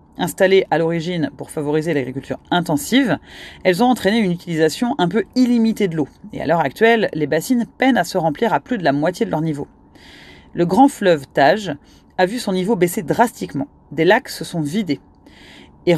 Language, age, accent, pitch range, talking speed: French, 40-59, French, 155-230 Hz, 190 wpm